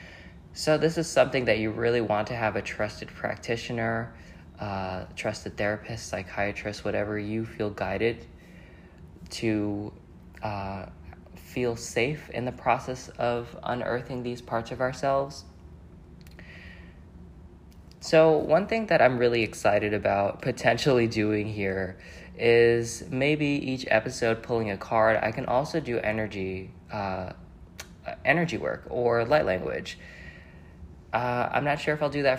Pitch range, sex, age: 100-125 Hz, male, 20-39